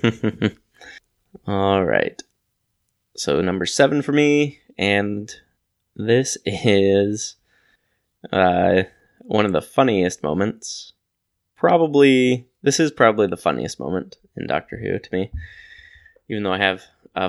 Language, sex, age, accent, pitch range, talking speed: English, male, 10-29, American, 95-110 Hz, 115 wpm